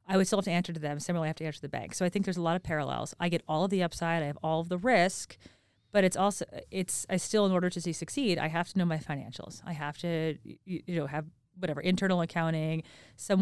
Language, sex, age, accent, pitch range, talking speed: English, female, 30-49, American, 155-185 Hz, 285 wpm